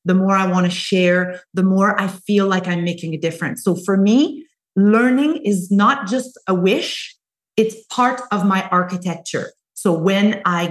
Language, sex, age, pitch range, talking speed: English, female, 30-49, 180-220 Hz, 180 wpm